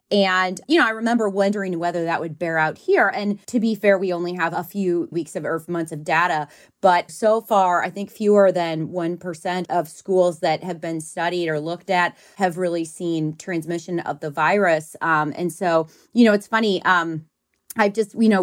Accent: American